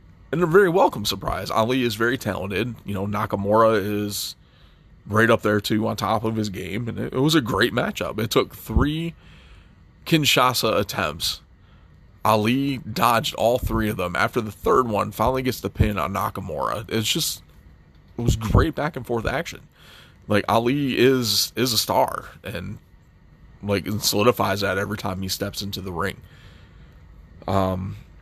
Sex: male